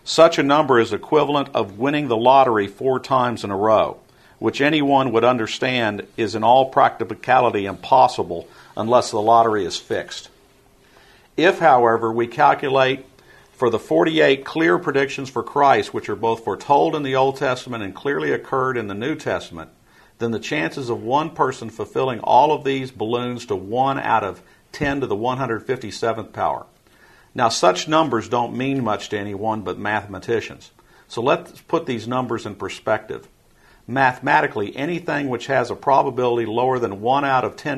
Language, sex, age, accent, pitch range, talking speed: English, male, 50-69, American, 110-135 Hz, 165 wpm